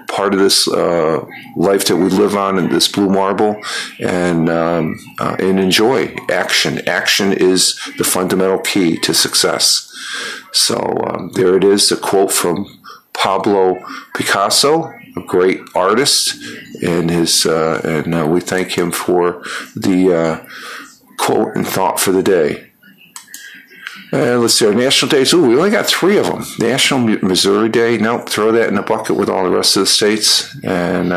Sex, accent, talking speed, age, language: male, American, 170 wpm, 50-69, English